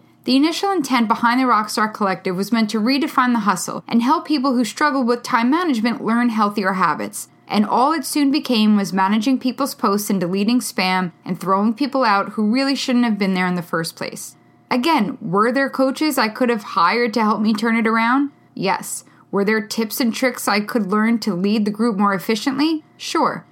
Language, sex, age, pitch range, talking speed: English, female, 10-29, 200-255 Hz, 205 wpm